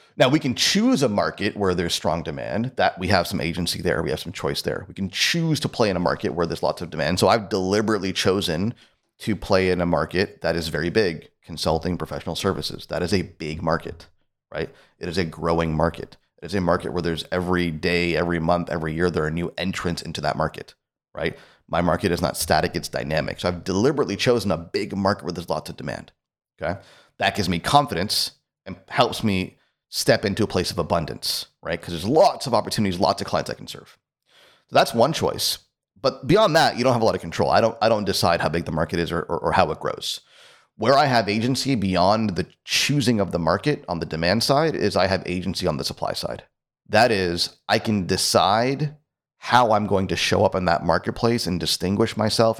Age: 30-49